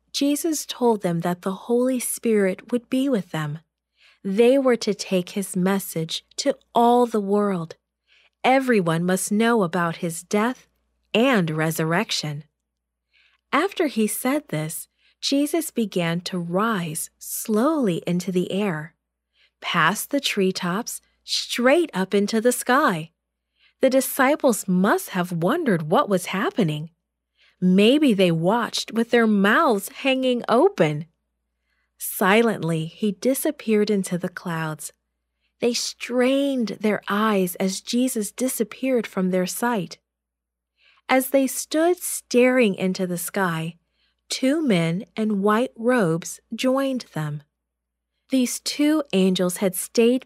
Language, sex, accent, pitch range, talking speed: English, female, American, 175-250 Hz, 120 wpm